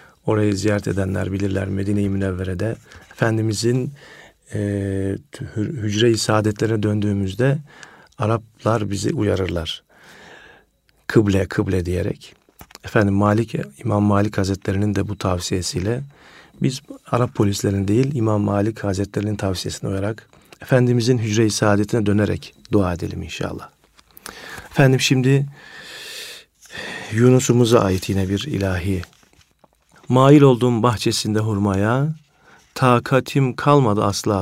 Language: Turkish